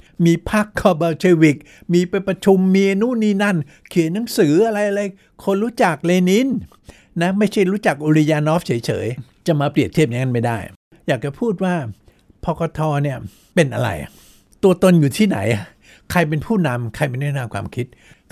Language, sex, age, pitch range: Thai, male, 60-79, 120-170 Hz